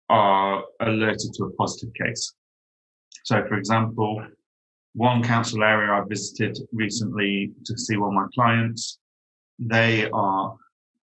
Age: 30-49